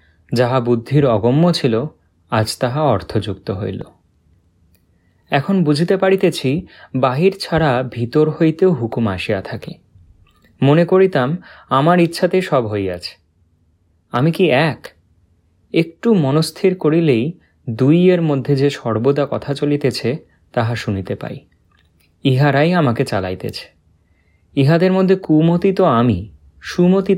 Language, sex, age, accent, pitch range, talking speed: Bengali, male, 30-49, native, 95-155 Hz, 105 wpm